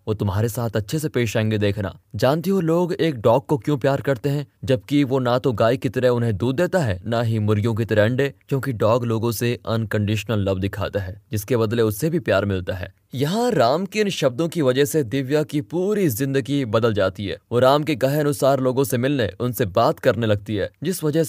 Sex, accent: male, native